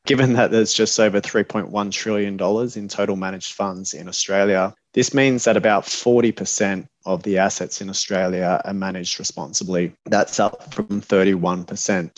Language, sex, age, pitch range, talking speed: English, male, 20-39, 95-110 Hz, 155 wpm